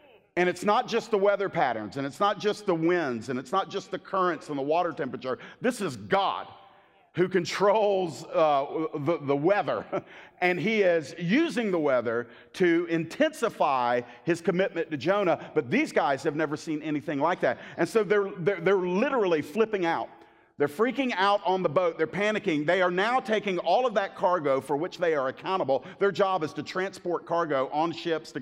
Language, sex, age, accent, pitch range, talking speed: English, male, 50-69, American, 160-210 Hz, 190 wpm